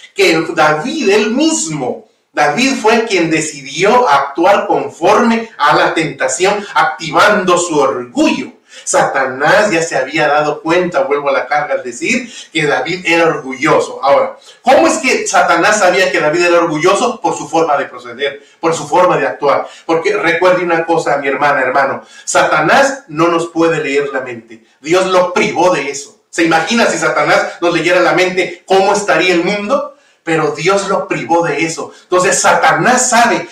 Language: Spanish